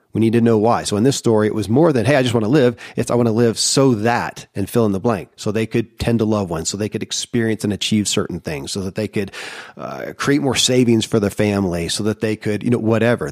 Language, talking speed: English, 290 wpm